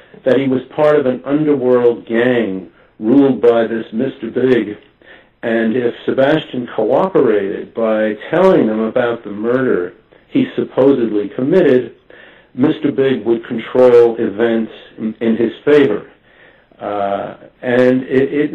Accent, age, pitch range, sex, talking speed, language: American, 60-79, 105-125 Hz, male, 125 wpm, English